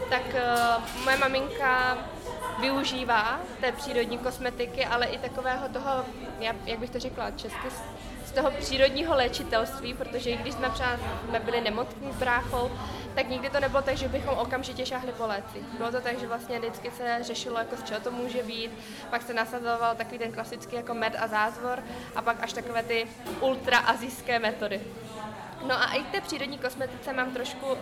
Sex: female